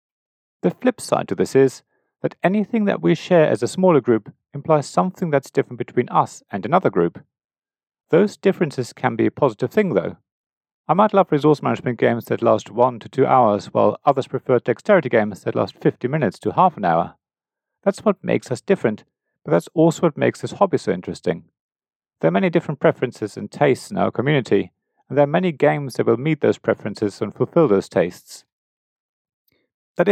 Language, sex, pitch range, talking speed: English, male, 120-180 Hz, 190 wpm